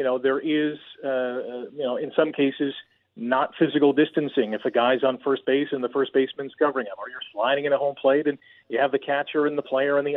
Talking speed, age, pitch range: 250 wpm, 40-59, 135-165 Hz